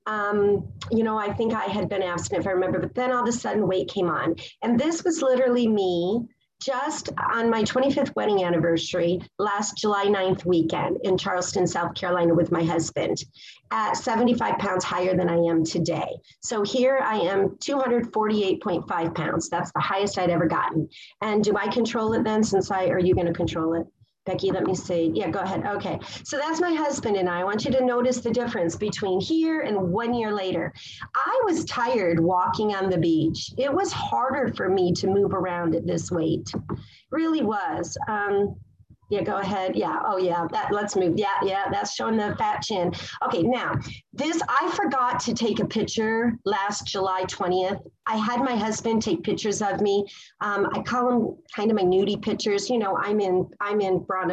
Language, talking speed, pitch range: English, 195 wpm, 180-230 Hz